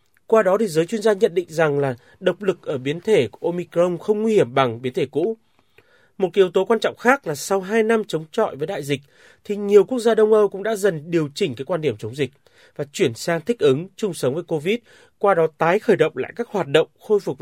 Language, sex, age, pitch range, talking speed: Vietnamese, male, 30-49, 150-215 Hz, 260 wpm